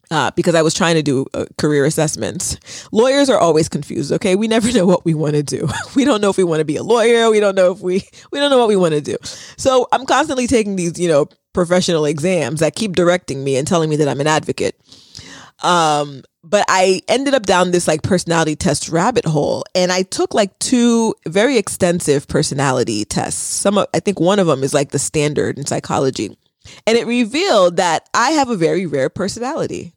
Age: 20-39